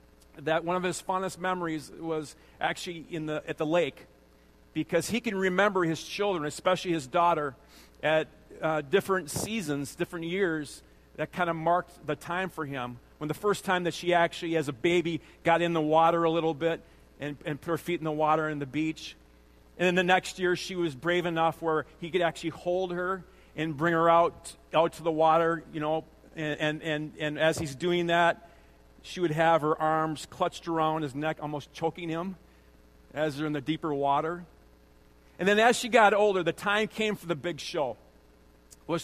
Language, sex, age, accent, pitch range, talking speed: English, male, 40-59, American, 150-175 Hz, 200 wpm